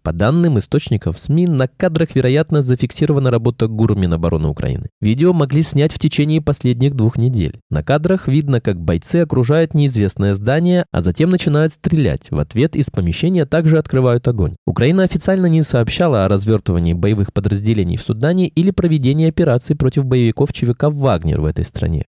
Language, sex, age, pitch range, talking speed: Russian, male, 20-39, 110-160 Hz, 160 wpm